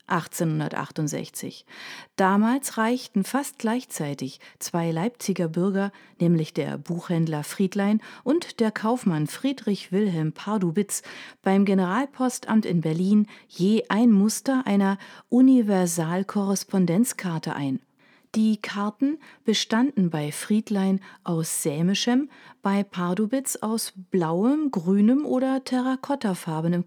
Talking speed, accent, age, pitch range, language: 95 wpm, German, 40-59, 175-230 Hz, German